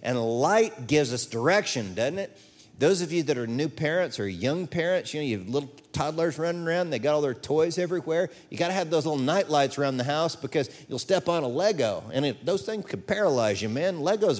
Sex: male